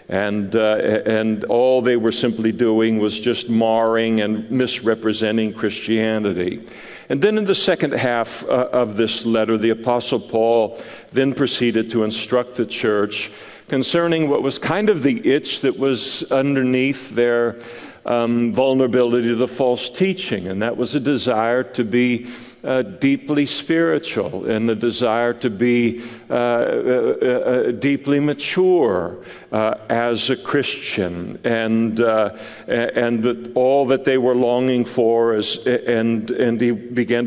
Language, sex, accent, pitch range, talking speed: English, male, American, 110-125 Hz, 145 wpm